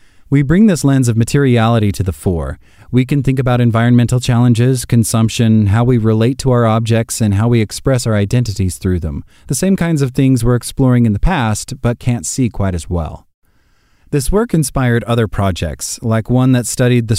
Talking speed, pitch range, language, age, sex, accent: 195 wpm, 105-130 Hz, English, 30-49, male, American